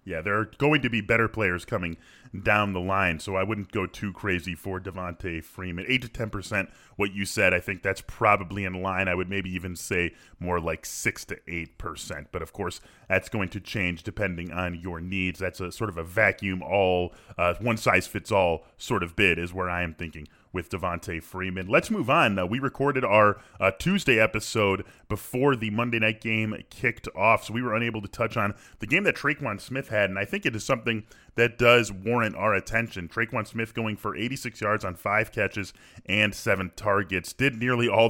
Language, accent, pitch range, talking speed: English, American, 90-110 Hz, 215 wpm